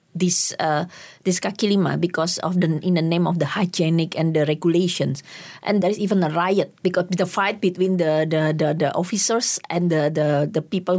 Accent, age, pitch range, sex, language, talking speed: Indonesian, 20-39, 165-200 Hz, female, English, 200 wpm